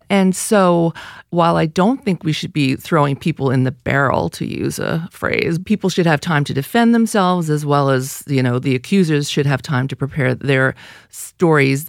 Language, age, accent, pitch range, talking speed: English, 40-59, American, 145-195 Hz, 195 wpm